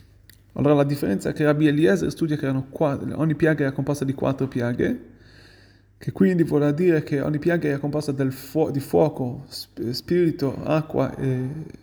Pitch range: 125-160 Hz